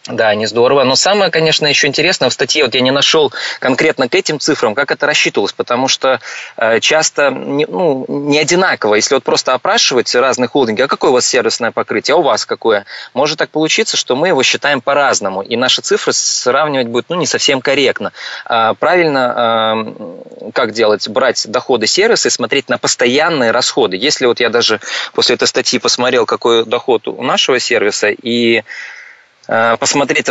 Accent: native